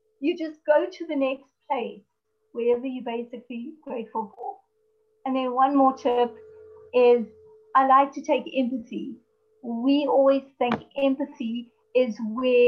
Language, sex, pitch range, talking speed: English, female, 245-305 Hz, 135 wpm